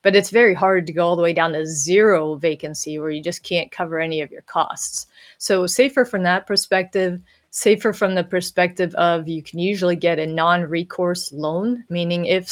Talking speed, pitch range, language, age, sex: 195 wpm, 170-190 Hz, English, 30-49, female